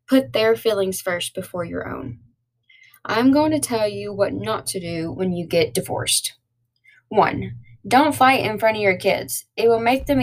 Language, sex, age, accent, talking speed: English, female, 10-29, American, 190 wpm